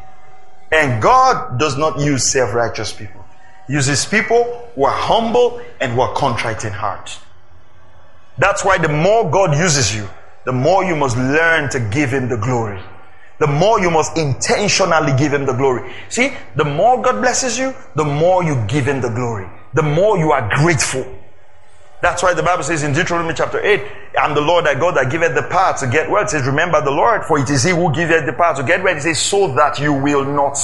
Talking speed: 210 wpm